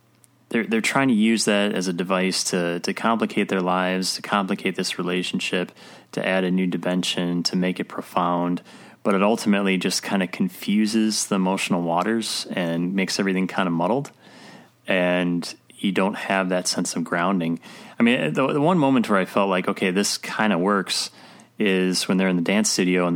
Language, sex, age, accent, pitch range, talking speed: English, male, 30-49, American, 90-100 Hz, 190 wpm